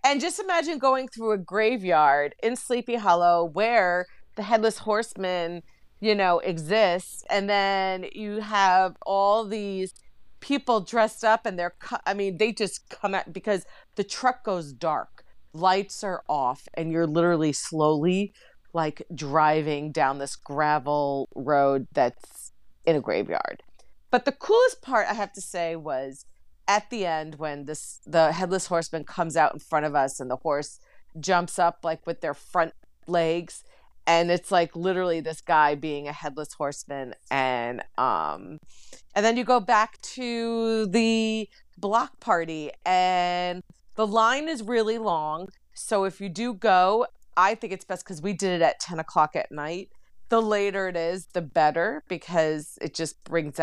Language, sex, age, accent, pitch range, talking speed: English, female, 40-59, American, 155-215 Hz, 160 wpm